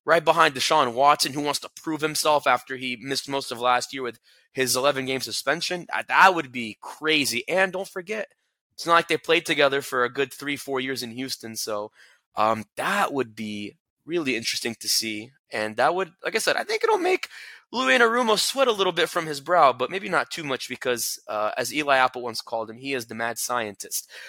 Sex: male